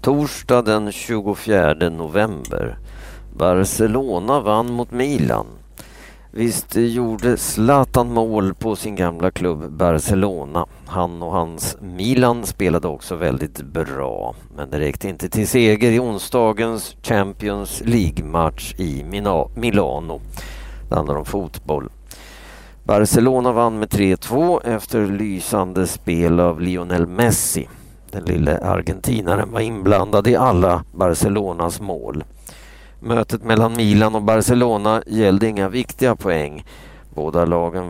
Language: Swedish